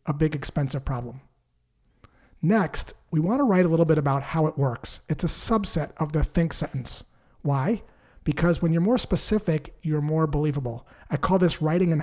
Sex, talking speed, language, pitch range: male, 180 wpm, English, 135-165 Hz